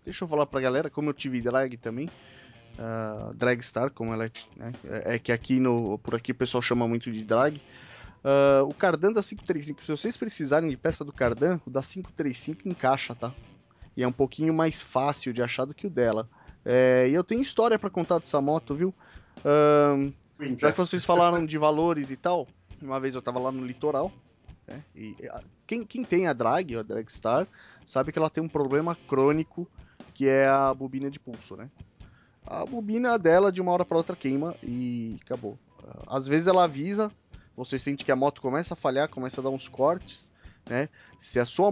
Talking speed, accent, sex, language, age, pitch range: 200 wpm, Brazilian, male, Portuguese, 20-39, 125-175 Hz